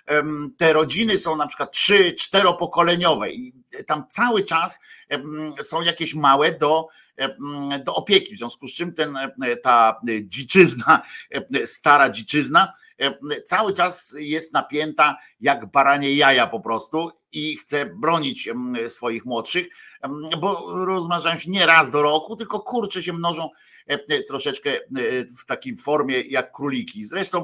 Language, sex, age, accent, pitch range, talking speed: Polish, male, 50-69, native, 120-170 Hz, 125 wpm